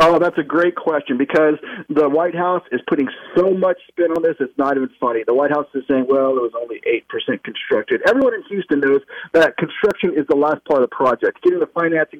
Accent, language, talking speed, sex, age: American, English, 230 wpm, male, 40-59